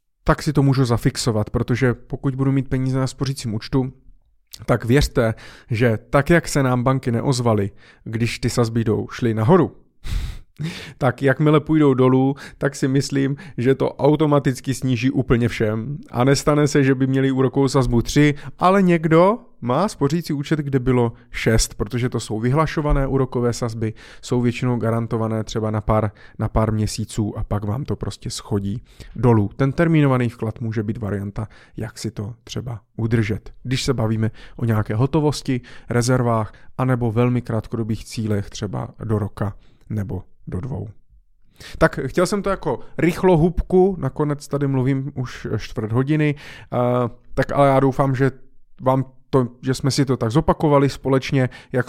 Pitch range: 115-140 Hz